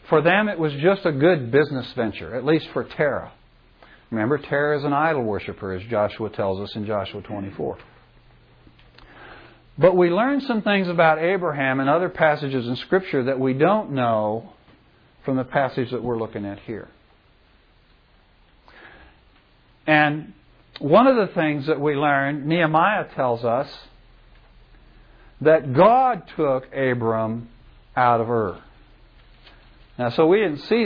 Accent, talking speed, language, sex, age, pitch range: American, 140 wpm, English, male, 60-79, 115-150 Hz